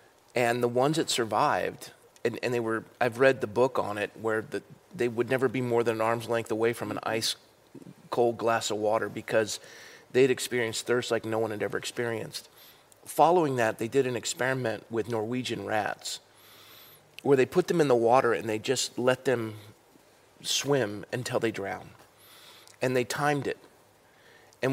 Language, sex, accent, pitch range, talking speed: English, male, American, 115-130 Hz, 175 wpm